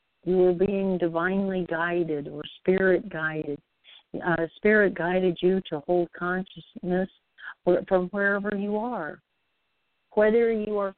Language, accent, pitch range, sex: English, American, 165-195 Hz, female